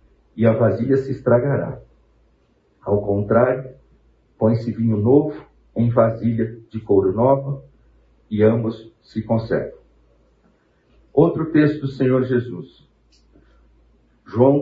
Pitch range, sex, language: 100-135 Hz, male, Portuguese